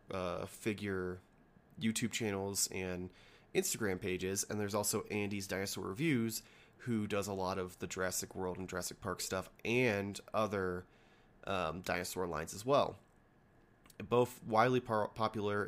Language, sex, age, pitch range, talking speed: English, male, 20-39, 95-120 Hz, 130 wpm